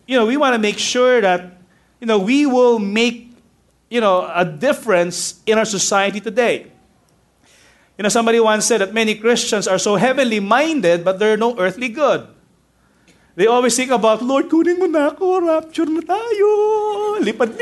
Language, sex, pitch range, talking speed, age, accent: English, male, 180-275 Hz, 175 wpm, 30-49, Filipino